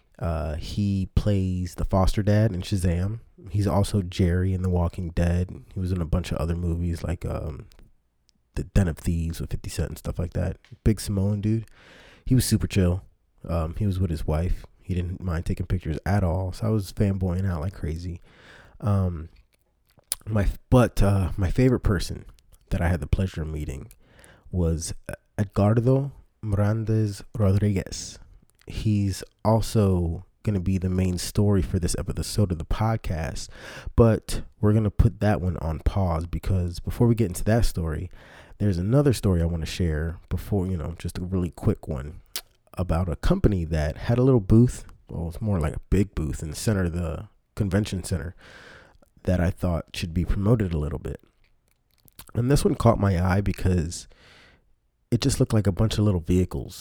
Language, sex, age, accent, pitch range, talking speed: English, male, 20-39, American, 85-105 Hz, 185 wpm